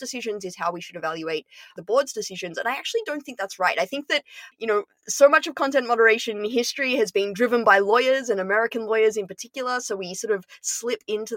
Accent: Australian